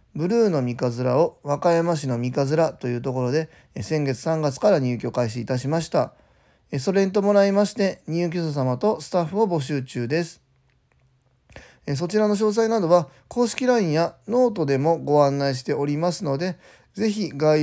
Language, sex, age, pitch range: Japanese, male, 20-39, 125-160 Hz